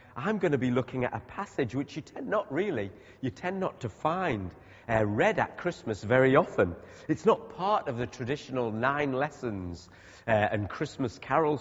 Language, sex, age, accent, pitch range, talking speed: English, male, 40-59, British, 100-135 Hz, 185 wpm